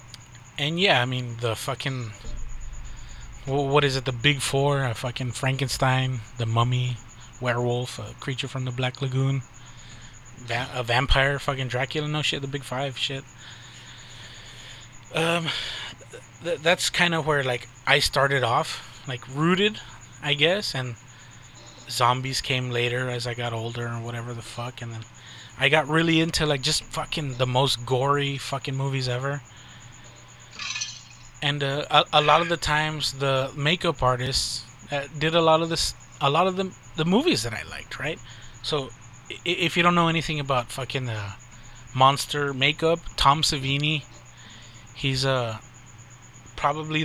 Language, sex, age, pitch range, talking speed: English, male, 20-39, 120-145 Hz, 150 wpm